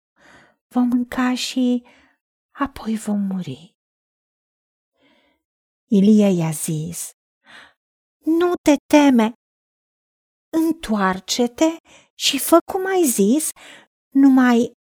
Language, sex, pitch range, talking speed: Romanian, female, 200-295 Hz, 75 wpm